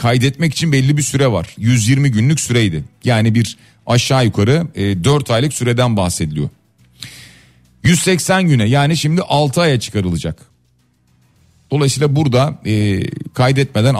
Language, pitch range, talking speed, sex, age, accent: Turkish, 105-150 Hz, 115 wpm, male, 40-59, native